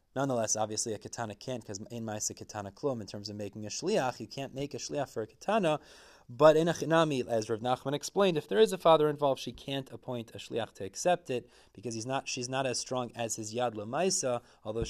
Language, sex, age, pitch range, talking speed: English, male, 30-49, 120-155 Hz, 235 wpm